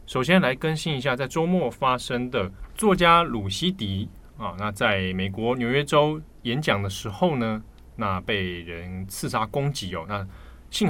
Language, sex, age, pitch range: Chinese, male, 20-39, 95-135 Hz